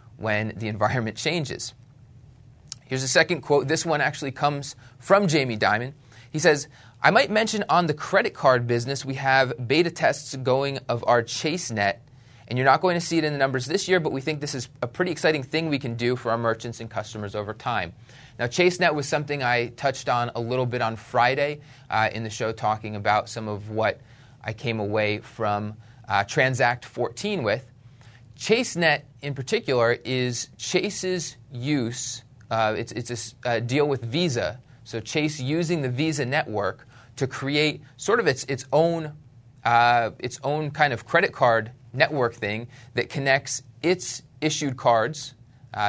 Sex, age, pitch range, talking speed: male, 30-49, 115-145 Hz, 180 wpm